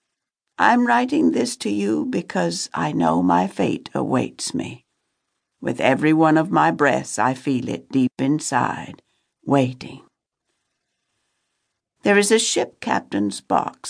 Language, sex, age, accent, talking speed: English, female, 60-79, American, 130 wpm